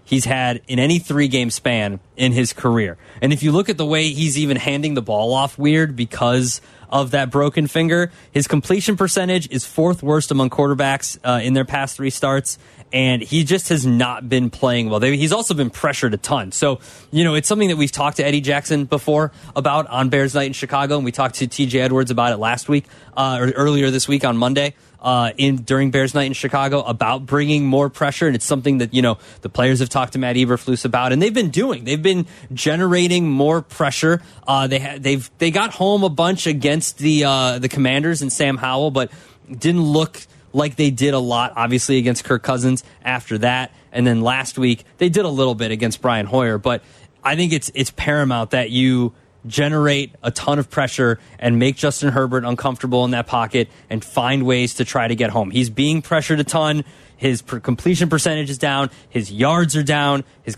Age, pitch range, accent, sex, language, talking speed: 20-39, 125-150 Hz, American, male, English, 210 wpm